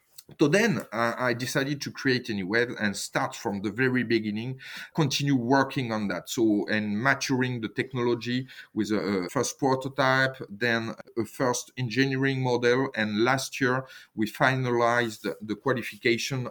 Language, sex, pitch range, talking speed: English, male, 110-135 Hz, 155 wpm